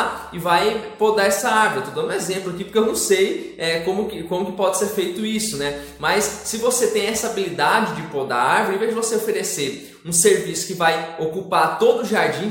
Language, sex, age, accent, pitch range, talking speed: Portuguese, male, 20-39, Brazilian, 170-220 Hz, 225 wpm